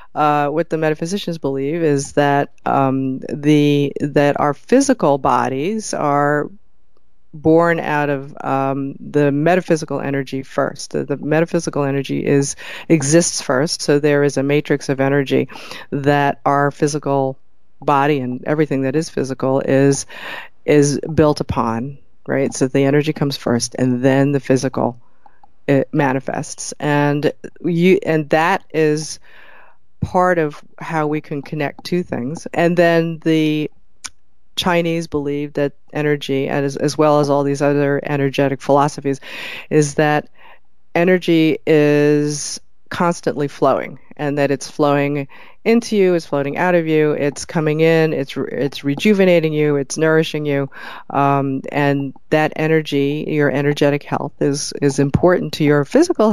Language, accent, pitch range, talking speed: English, American, 140-160 Hz, 140 wpm